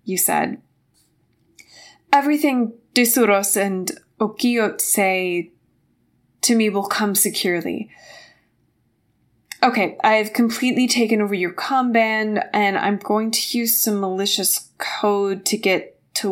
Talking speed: 115 wpm